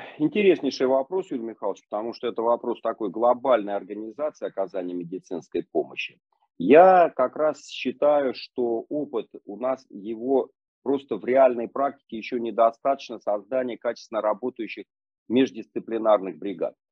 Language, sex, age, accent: Russian, male, 40-59, native